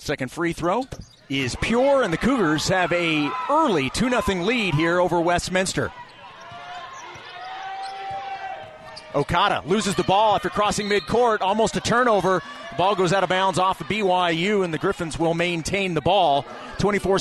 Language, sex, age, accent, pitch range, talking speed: English, male, 30-49, American, 155-200 Hz, 145 wpm